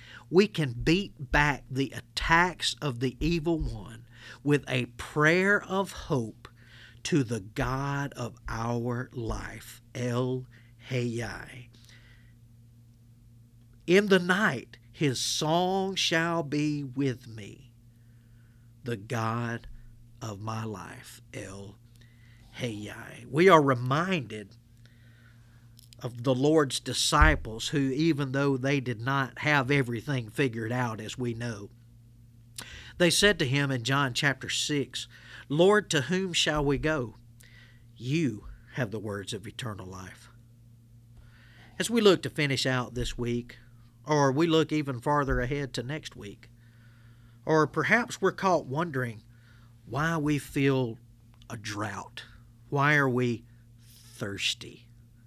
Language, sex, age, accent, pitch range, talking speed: English, male, 50-69, American, 115-145 Hz, 120 wpm